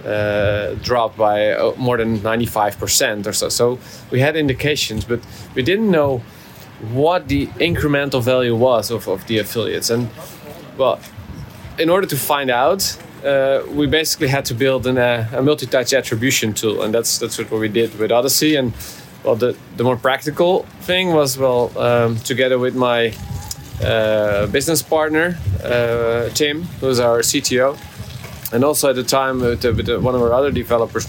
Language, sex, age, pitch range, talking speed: English, male, 20-39, 115-140 Hz, 165 wpm